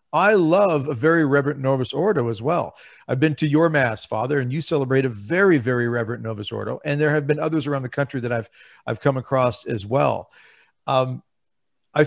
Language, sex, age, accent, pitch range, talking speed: English, male, 50-69, American, 125-160 Hz, 205 wpm